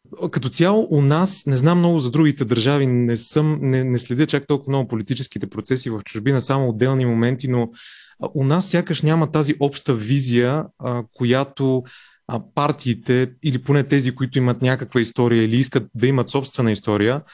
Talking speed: 165 wpm